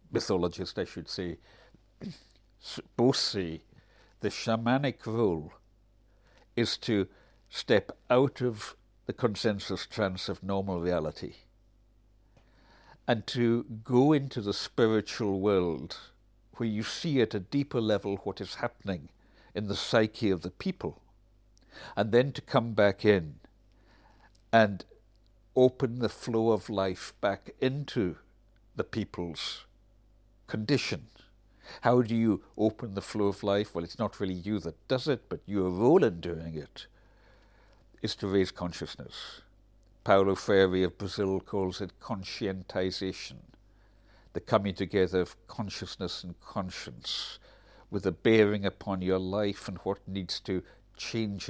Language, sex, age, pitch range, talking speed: English, male, 60-79, 95-115 Hz, 130 wpm